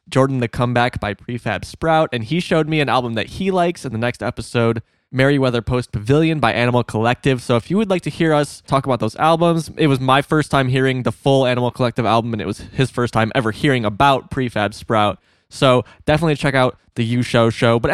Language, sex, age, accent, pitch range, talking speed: English, male, 20-39, American, 110-135 Hz, 225 wpm